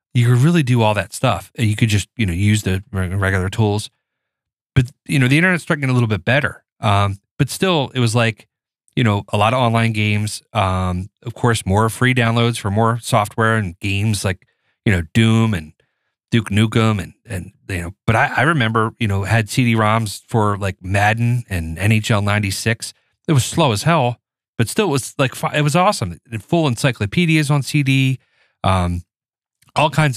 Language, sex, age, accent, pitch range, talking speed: English, male, 30-49, American, 100-125 Hz, 195 wpm